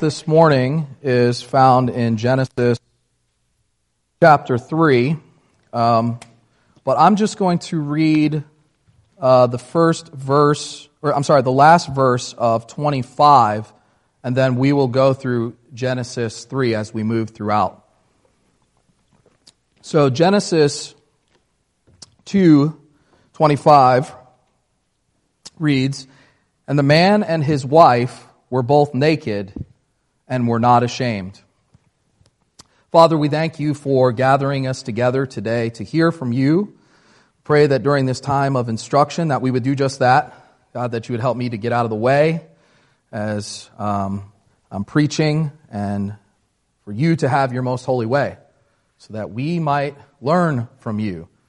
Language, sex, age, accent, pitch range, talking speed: English, male, 40-59, American, 115-150 Hz, 135 wpm